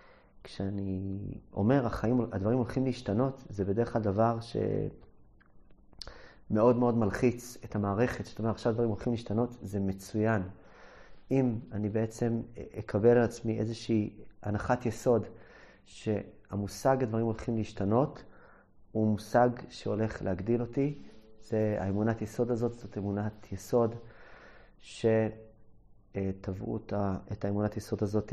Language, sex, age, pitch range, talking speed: English, male, 30-49, 105-120 Hz, 85 wpm